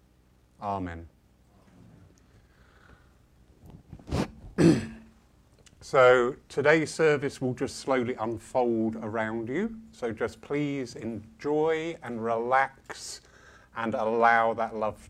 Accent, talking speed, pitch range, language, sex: British, 80 wpm, 90-135 Hz, English, male